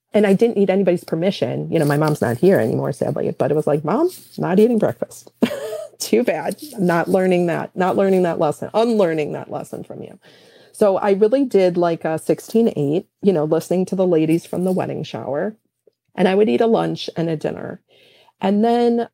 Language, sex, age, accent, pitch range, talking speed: English, female, 30-49, American, 150-200 Hz, 200 wpm